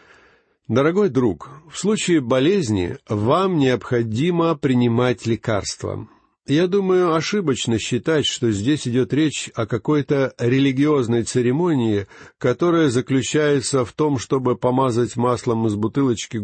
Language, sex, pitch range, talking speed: Russian, male, 115-150 Hz, 110 wpm